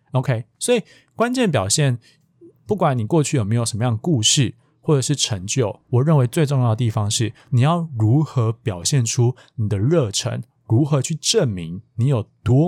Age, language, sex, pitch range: 20-39, Chinese, male, 115-145 Hz